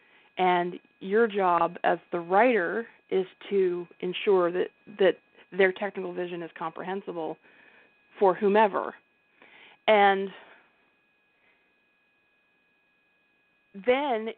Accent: American